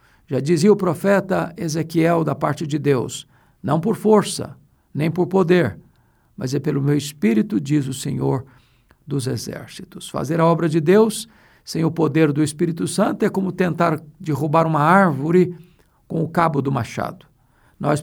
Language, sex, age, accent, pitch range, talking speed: Portuguese, male, 50-69, Brazilian, 140-175 Hz, 160 wpm